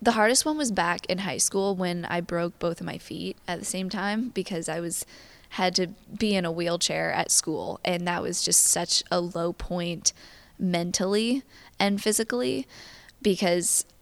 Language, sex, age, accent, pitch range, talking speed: English, female, 20-39, American, 175-190 Hz, 180 wpm